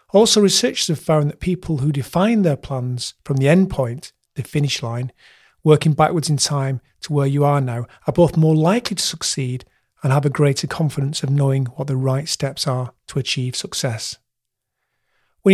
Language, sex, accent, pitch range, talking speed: English, male, British, 135-165 Hz, 185 wpm